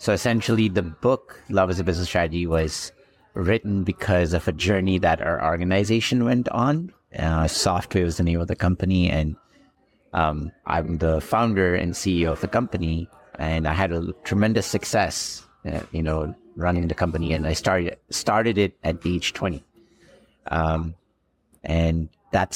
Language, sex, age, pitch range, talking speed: English, male, 50-69, 80-95 Hz, 160 wpm